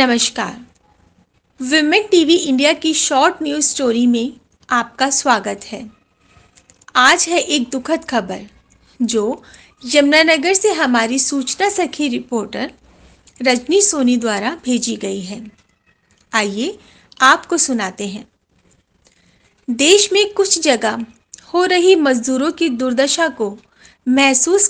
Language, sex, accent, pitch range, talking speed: Hindi, female, native, 240-325 Hz, 100 wpm